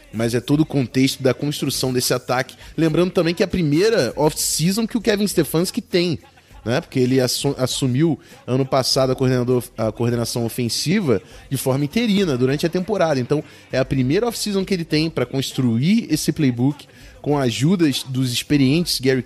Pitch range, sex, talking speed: 130-175 Hz, male, 170 wpm